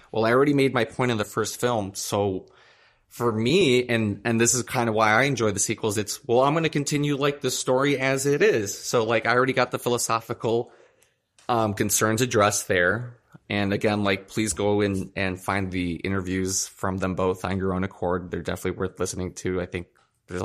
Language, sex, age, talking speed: English, male, 20-39, 210 wpm